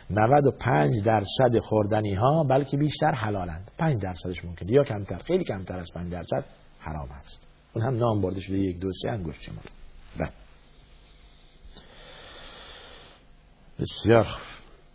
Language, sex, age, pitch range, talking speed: Persian, male, 50-69, 90-120 Hz, 135 wpm